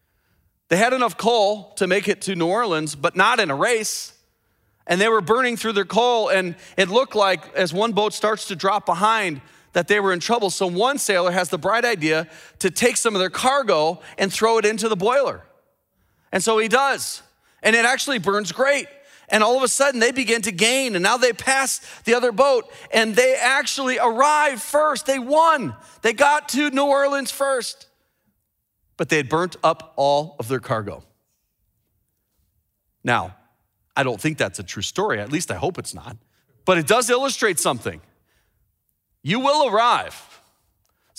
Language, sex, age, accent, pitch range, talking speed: English, male, 30-49, American, 155-240 Hz, 185 wpm